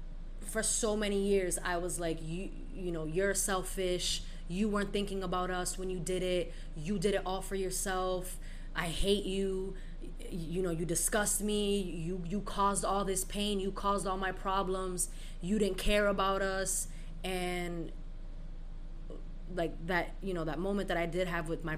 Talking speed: 180 wpm